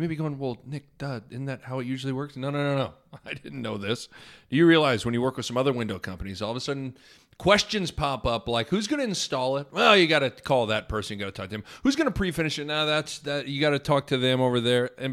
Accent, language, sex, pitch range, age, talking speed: American, English, male, 120-160 Hz, 40-59, 285 wpm